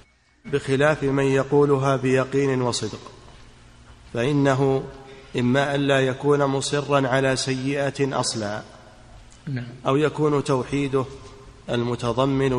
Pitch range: 125-140 Hz